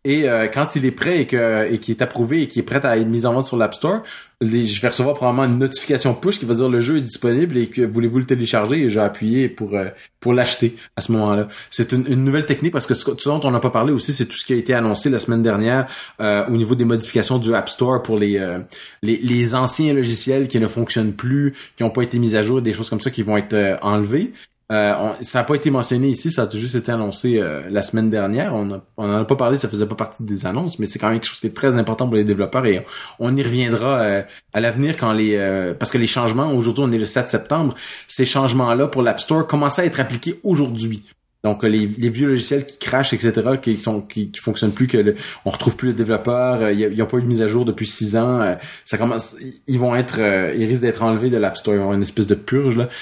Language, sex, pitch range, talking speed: French, male, 110-130 Hz, 270 wpm